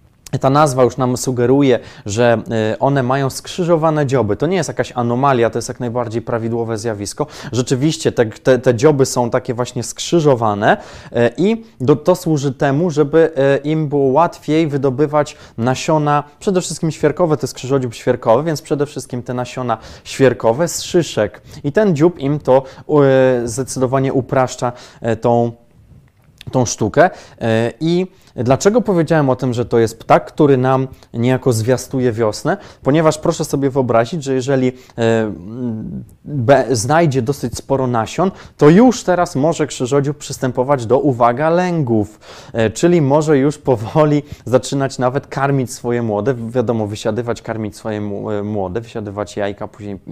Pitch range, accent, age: 115-145 Hz, native, 20-39